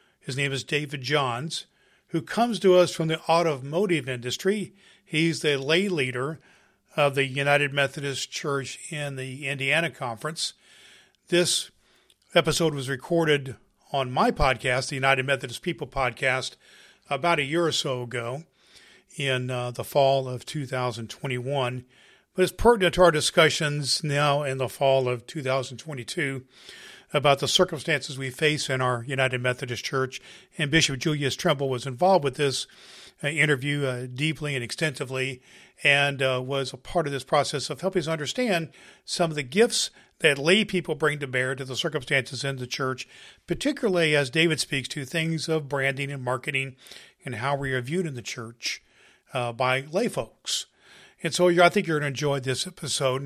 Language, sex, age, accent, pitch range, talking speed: English, male, 40-59, American, 130-165 Hz, 160 wpm